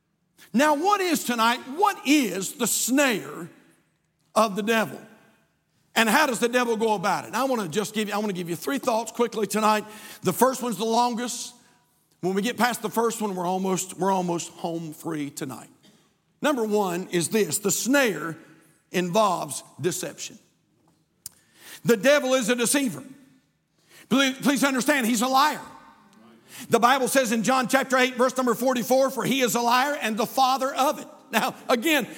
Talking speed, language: 170 wpm, English